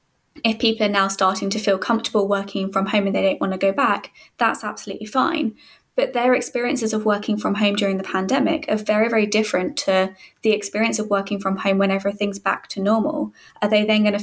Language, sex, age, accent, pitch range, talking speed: English, female, 20-39, British, 195-225 Hz, 220 wpm